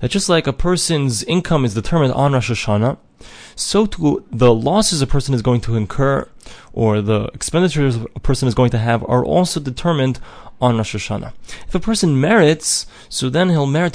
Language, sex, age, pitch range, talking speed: English, male, 20-39, 120-160 Hz, 190 wpm